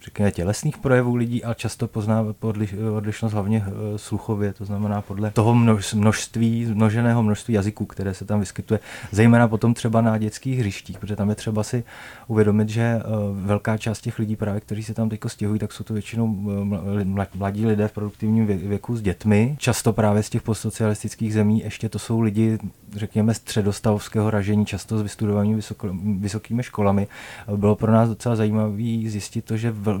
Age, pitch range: 30-49, 105-110 Hz